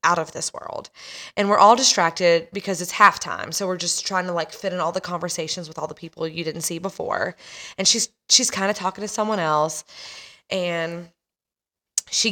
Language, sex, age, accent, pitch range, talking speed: English, female, 20-39, American, 165-205 Hz, 200 wpm